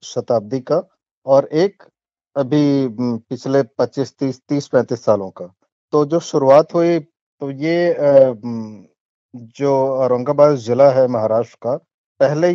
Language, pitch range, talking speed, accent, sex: Hindi, 125-155 Hz, 105 wpm, native, male